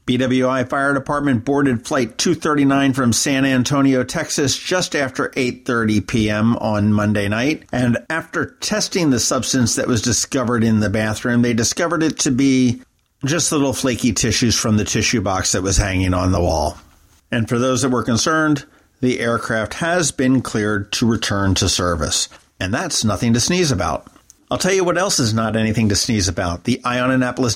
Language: English